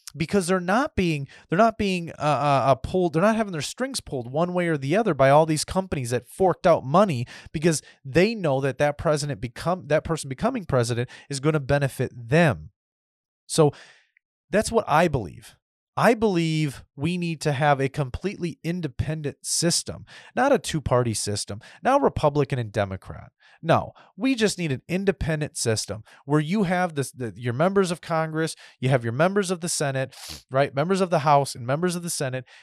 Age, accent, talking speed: 30-49, American, 180 wpm